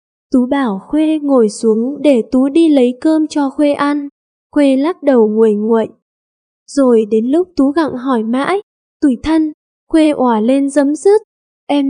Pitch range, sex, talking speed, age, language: 250-315 Hz, female, 165 wpm, 10-29, Vietnamese